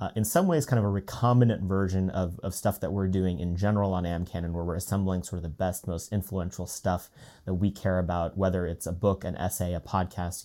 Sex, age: male, 30-49